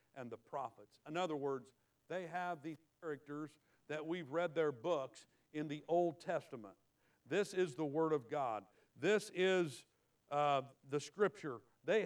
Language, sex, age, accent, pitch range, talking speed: English, male, 50-69, American, 120-160 Hz, 155 wpm